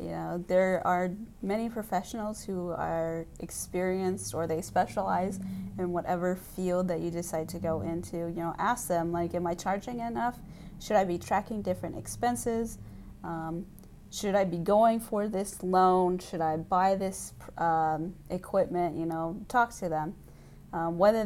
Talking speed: 160 wpm